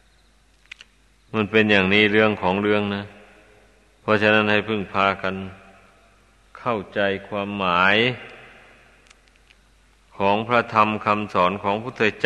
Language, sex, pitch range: Thai, male, 105-115 Hz